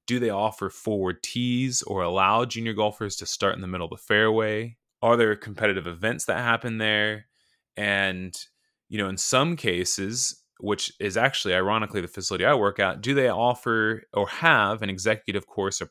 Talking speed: 180 wpm